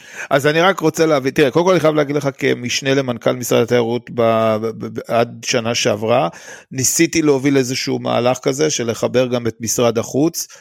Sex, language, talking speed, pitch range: male, Hebrew, 170 wpm, 115-135 Hz